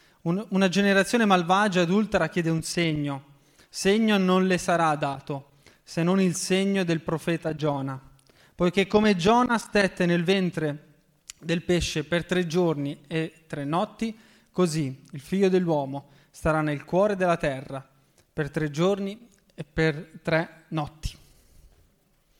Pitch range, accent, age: 155-190 Hz, native, 20-39